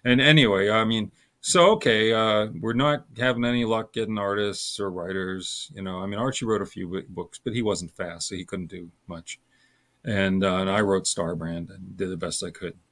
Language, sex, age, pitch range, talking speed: English, male, 40-59, 95-120 Hz, 220 wpm